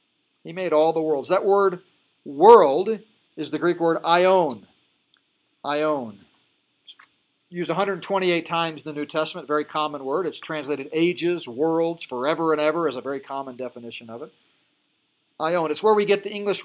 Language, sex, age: English, male, 50-69